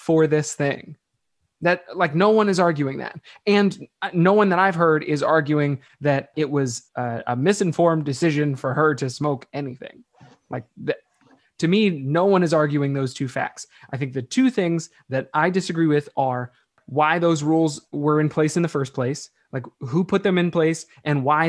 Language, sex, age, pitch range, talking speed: English, male, 20-39, 140-165 Hz, 195 wpm